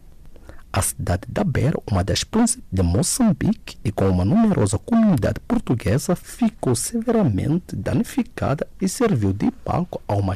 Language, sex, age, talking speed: English, male, 50-69, 140 wpm